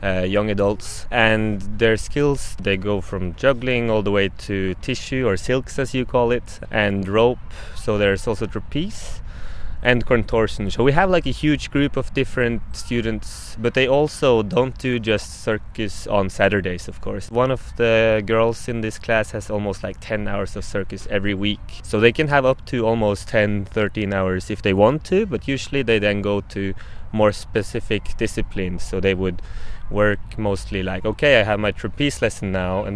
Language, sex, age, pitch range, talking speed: Czech, male, 20-39, 95-110 Hz, 190 wpm